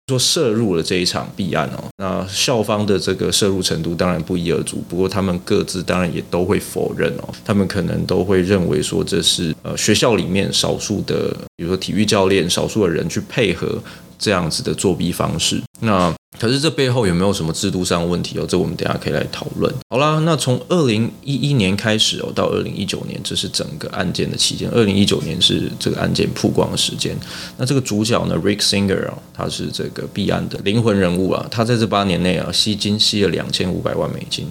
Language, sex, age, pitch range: Chinese, male, 20-39, 95-115 Hz